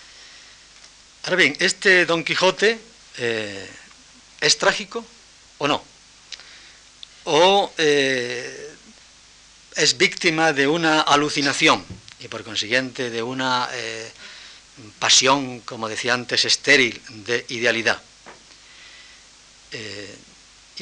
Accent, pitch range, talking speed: Spanish, 120-185 Hz, 90 wpm